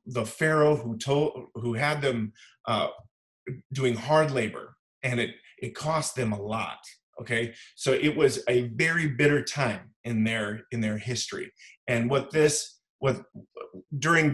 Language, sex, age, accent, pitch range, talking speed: English, male, 30-49, American, 115-155 Hz, 150 wpm